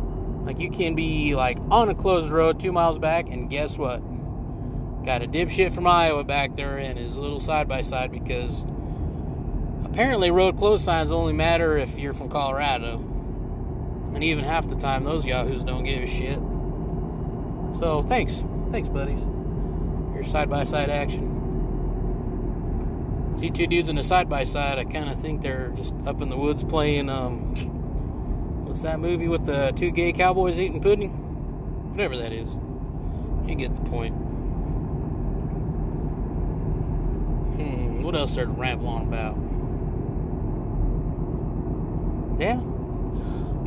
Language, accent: English, American